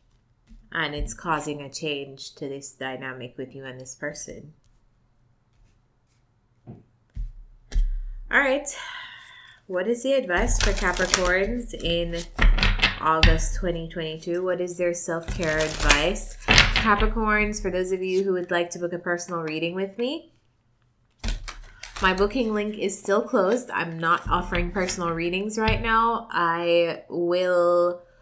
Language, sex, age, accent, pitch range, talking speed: English, female, 20-39, American, 145-185 Hz, 125 wpm